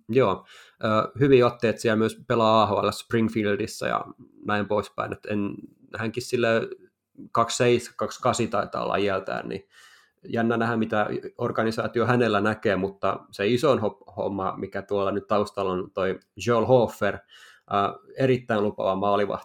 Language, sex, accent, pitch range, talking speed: Finnish, male, native, 100-115 Hz, 120 wpm